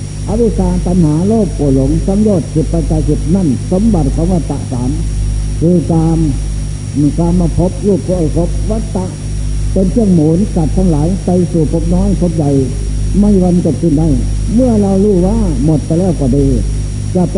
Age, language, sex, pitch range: 60-79, Thai, male, 135-185 Hz